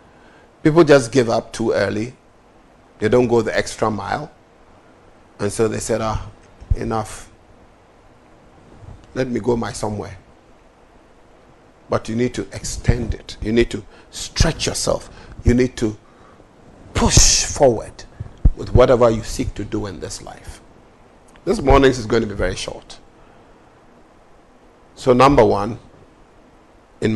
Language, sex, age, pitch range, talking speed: English, male, 50-69, 105-120 Hz, 135 wpm